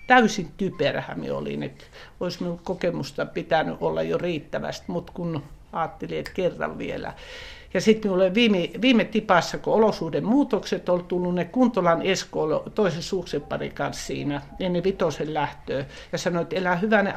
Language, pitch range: Finnish, 155-195 Hz